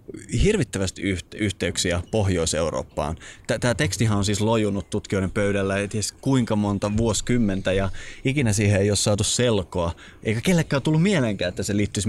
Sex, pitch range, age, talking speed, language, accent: male, 95-115 Hz, 20-39, 140 wpm, Finnish, native